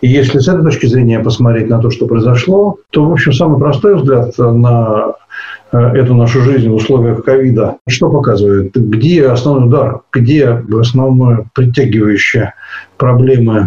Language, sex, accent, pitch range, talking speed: Russian, male, native, 120-160 Hz, 150 wpm